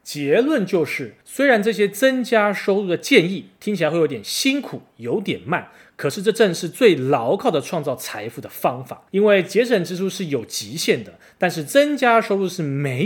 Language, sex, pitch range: Chinese, male, 150-230 Hz